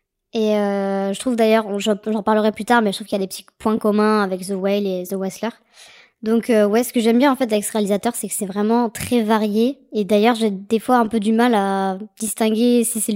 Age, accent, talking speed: 20-39, French, 255 wpm